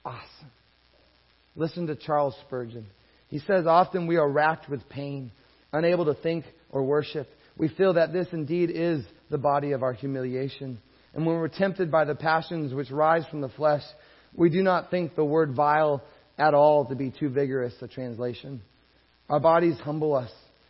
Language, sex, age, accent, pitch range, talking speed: English, male, 30-49, American, 125-160 Hz, 175 wpm